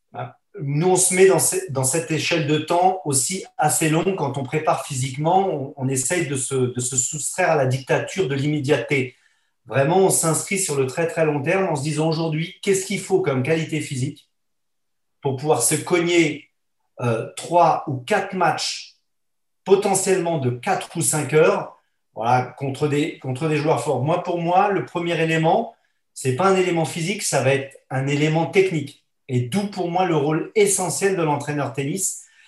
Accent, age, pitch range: French, 40-59, 140-180 Hz